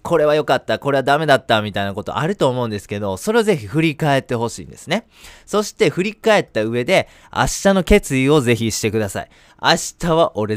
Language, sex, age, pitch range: Japanese, male, 20-39, 110-180 Hz